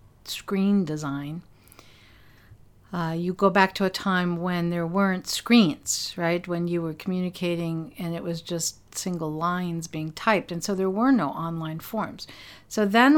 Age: 50-69